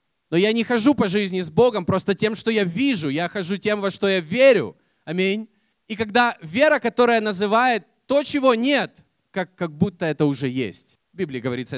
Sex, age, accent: male, 20-39, native